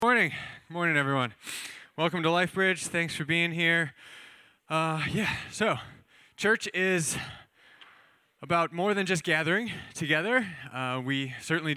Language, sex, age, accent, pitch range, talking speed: English, male, 20-39, American, 125-165 Hz, 130 wpm